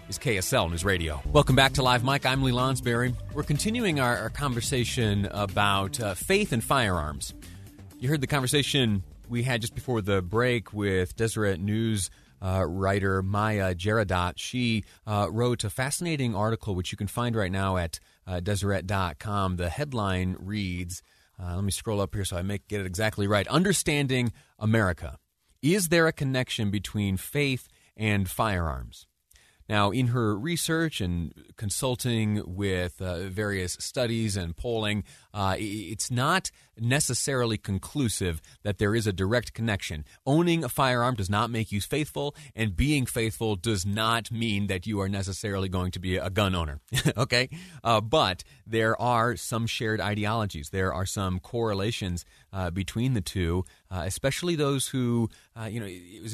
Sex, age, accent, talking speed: male, 30-49, American, 165 wpm